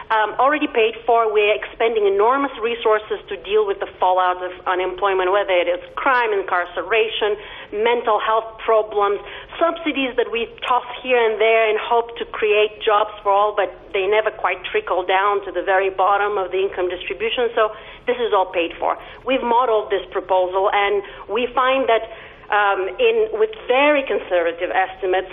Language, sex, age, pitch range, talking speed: English, female, 40-59, 200-280 Hz, 170 wpm